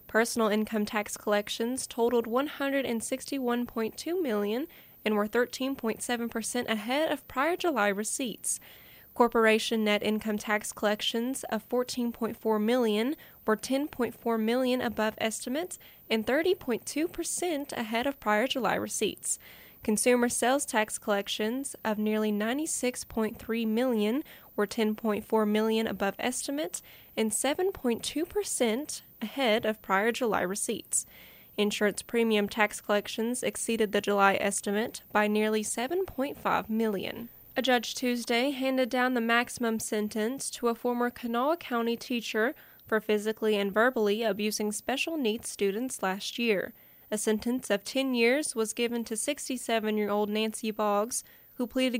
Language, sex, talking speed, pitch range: English, female, 120 wpm, 215-250 Hz